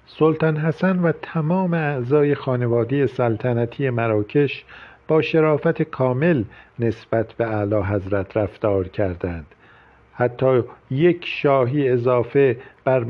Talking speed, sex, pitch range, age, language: 100 wpm, male, 120-140 Hz, 50-69, Persian